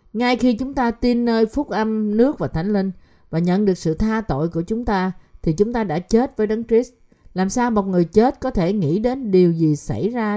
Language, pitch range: Vietnamese, 155-215 Hz